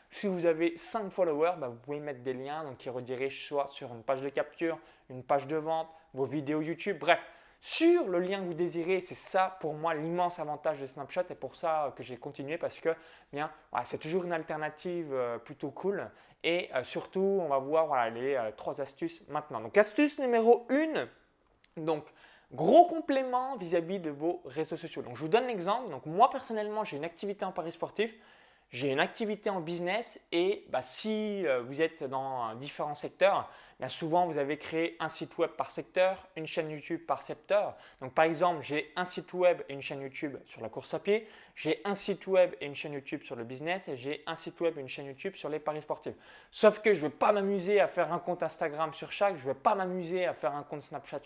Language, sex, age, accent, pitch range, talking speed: French, male, 20-39, French, 150-195 Hz, 220 wpm